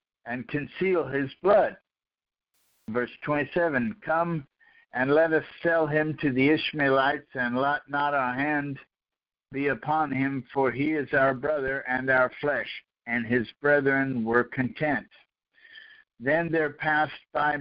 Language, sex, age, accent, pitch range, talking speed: English, male, 60-79, American, 135-170 Hz, 135 wpm